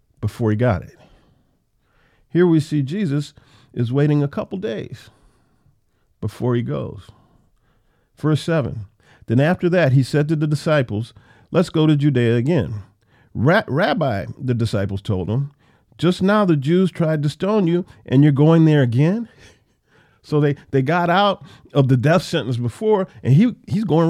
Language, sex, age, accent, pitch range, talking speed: English, male, 40-59, American, 120-165 Hz, 155 wpm